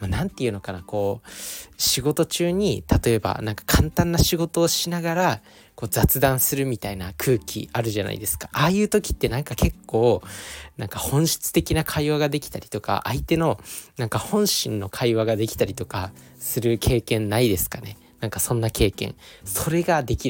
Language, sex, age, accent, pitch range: Japanese, male, 20-39, native, 100-140 Hz